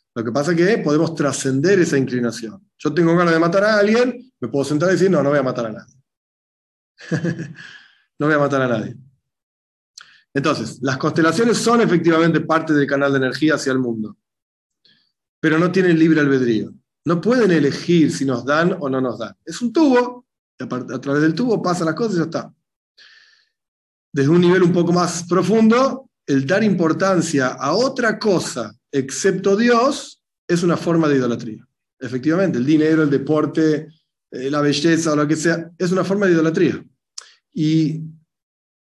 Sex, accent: male, Argentinian